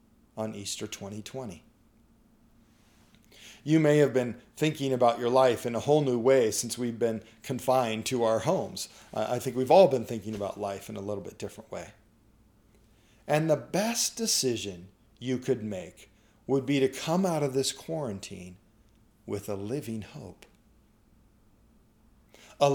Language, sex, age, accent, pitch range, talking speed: English, male, 40-59, American, 105-130 Hz, 150 wpm